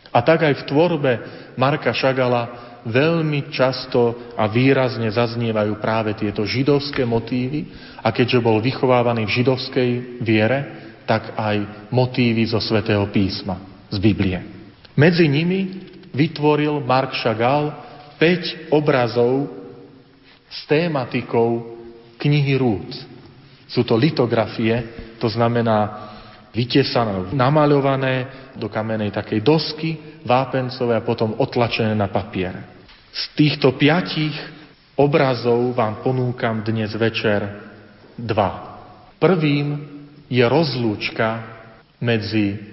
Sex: male